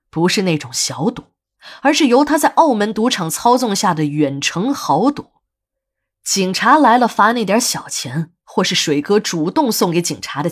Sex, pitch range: female, 155-235 Hz